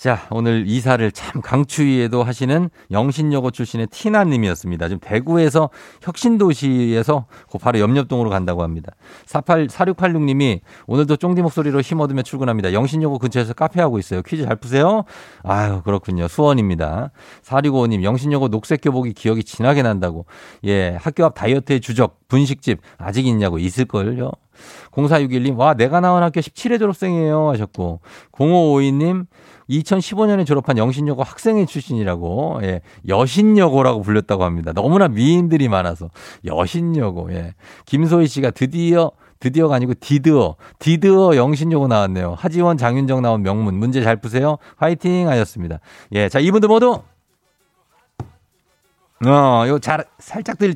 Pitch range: 110-160 Hz